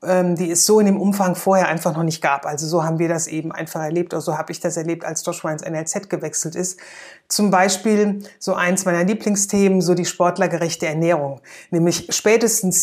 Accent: German